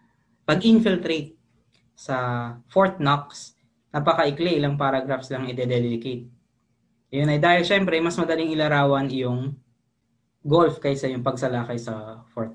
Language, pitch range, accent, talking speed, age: English, 125-160 Hz, Filipino, 105 wpm, 20-39